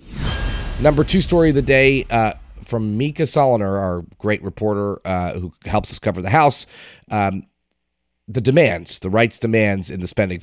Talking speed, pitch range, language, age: 165 wpm, 95-120 Hz, English, 30-49